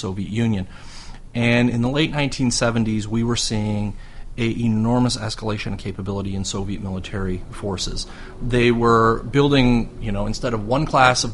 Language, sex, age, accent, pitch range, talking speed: English, male, 30-49, American, 105-120 Hz, 155 wpm